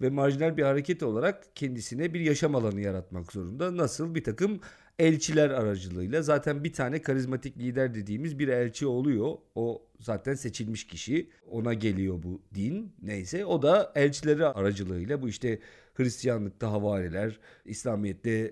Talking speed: 140 wpm